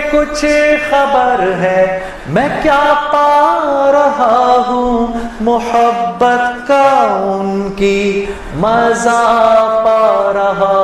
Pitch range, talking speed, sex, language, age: 155-220 Hz, 85 wpm, male, Urdu, 30-49